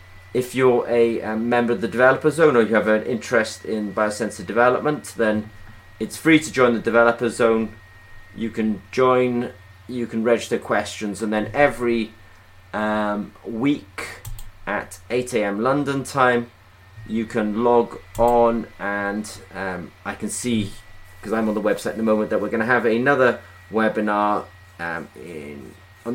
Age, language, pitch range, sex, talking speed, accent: 30-49, English, 100-120 Hz, male, 155 wpm, British